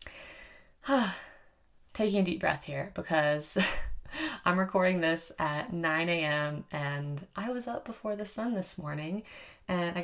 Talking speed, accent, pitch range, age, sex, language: 135 wpm, American, 155-210 Hz, 20-39, female, English